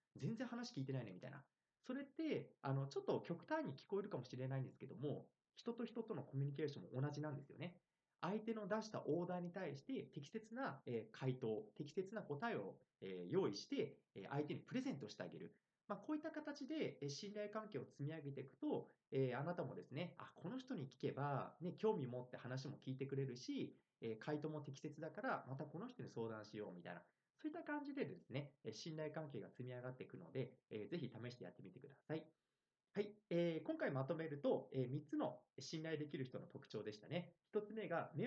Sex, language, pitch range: male, Japanese, 135-195 Hz